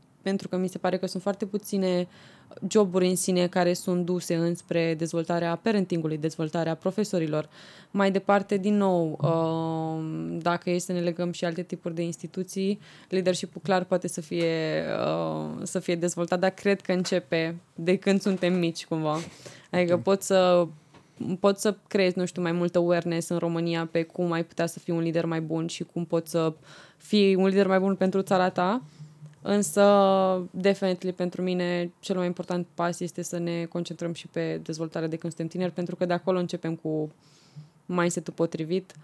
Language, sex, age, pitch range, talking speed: Romanian, female, 20-39, 165-185 Hz, 170 wpm